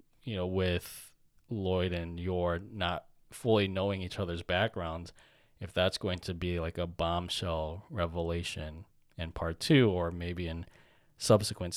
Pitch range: 85-110 Hz